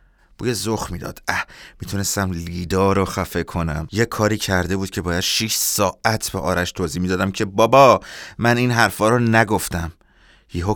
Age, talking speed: 30-49, 160 wpm